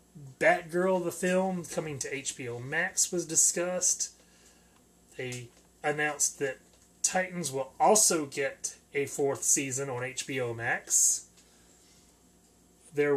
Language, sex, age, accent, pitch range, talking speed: English, male, 30-49, American, 135-170 Hz, 105 wpm